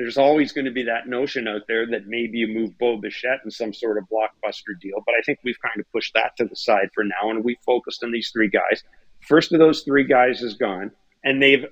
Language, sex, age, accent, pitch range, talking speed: English, male, 40-59, American, 110-130 Hz, 255 wpm